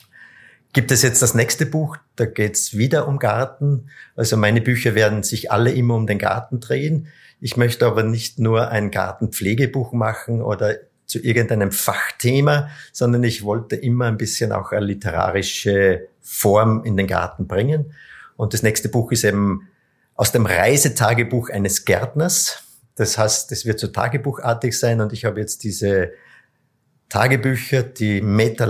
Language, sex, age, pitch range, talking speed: German, male, 50-69, 105-130 Hz, 155 wpm